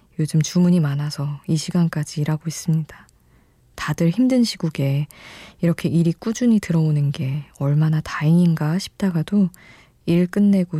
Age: 20-39